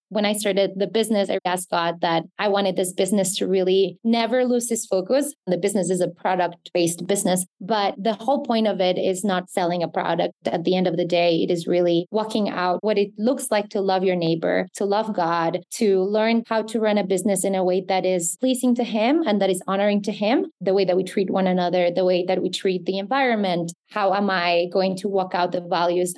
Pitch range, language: 185-215 Hz, English